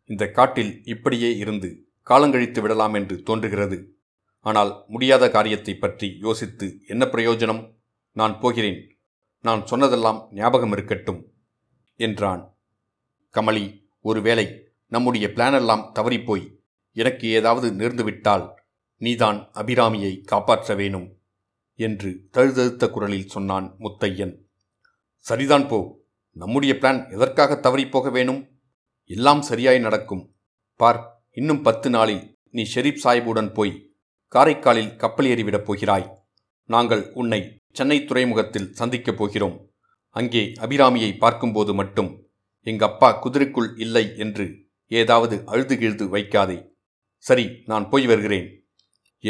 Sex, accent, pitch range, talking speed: male, native, 100-120 Hz, 100 wpm